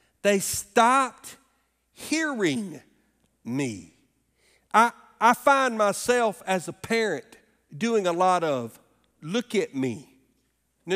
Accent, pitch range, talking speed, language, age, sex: American, 185-255 Hz, 105 wpm, English, 50-69, male